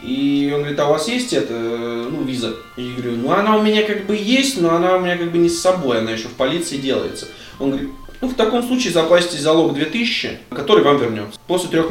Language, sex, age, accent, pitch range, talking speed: Russian, male, 20-39, native, 120-155 Hz, 235 wpm